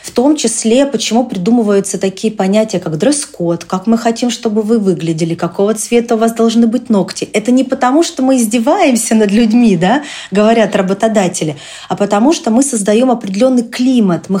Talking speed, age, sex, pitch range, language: 165 wpm, 30-49, female, 205-250 Hz, Russian